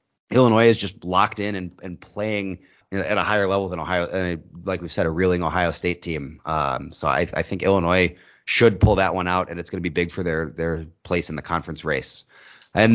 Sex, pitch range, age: male, 85-100 Hz, 30-49